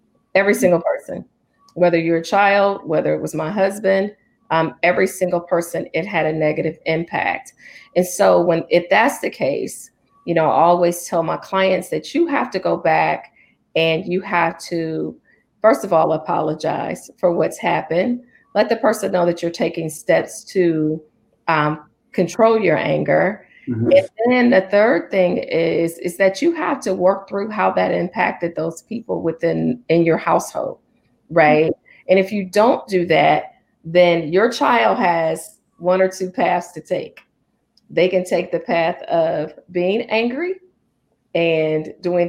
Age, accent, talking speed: 40-59, American, 160 wpm